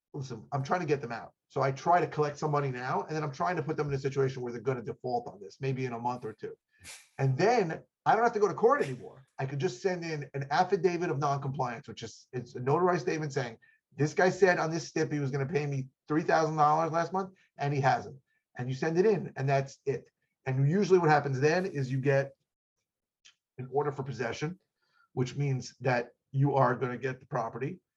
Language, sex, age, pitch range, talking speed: English, male, 30-49, 130-155 Hz, 240 wpm